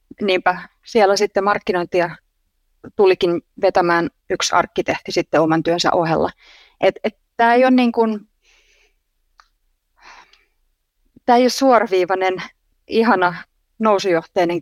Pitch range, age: 165-200 Hz, 30-49